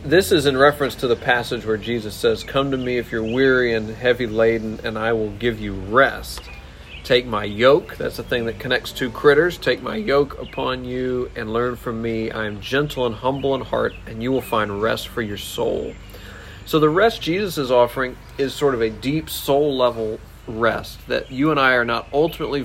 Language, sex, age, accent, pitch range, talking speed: English, male, 40-59, American, 110-140 Hz, 210 wpm